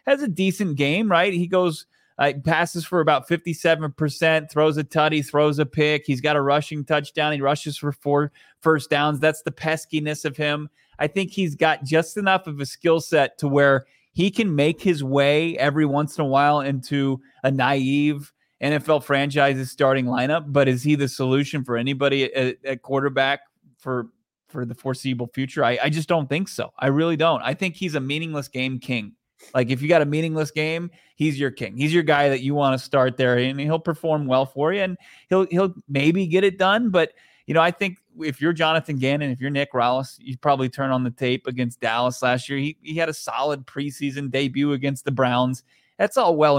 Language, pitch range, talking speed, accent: English, 130-160 Hz, 210 wpm, American